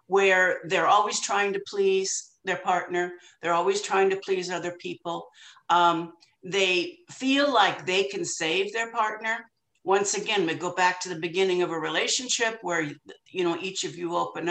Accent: American